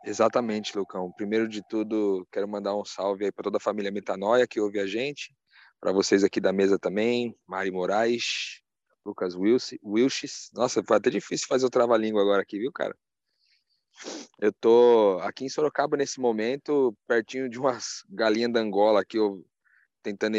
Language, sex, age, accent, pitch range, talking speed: Portuguese, male, 20-39, Brazilian, 100-115 Hz, 165 wpm